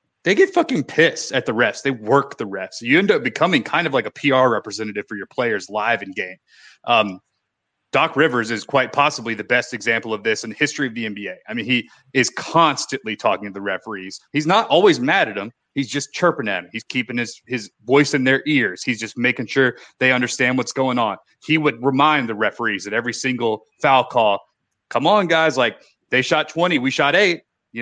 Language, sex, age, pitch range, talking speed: English, male, 30-49, 115-140 Hz, 220 wpm